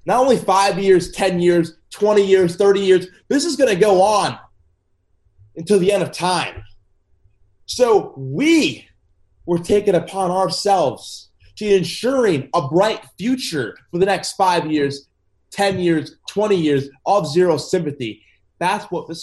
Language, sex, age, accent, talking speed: English, male, 20-39, American, 145 wpm